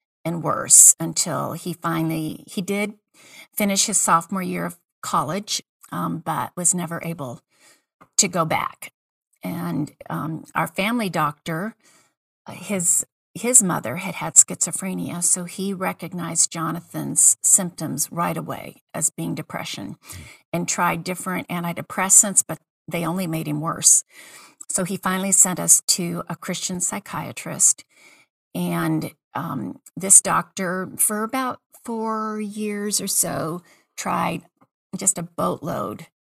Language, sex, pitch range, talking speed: English, female, 165-195 Hz, 120 wpm